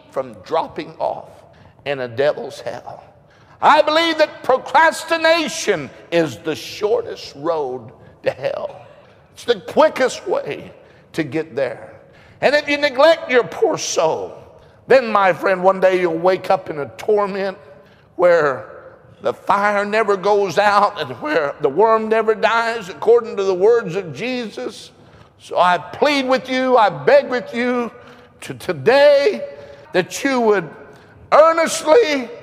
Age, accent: 60-79, American